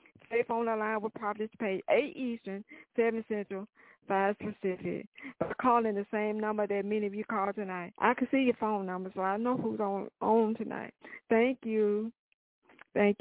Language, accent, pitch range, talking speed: English, American, 200-230 Hz, 180 wpm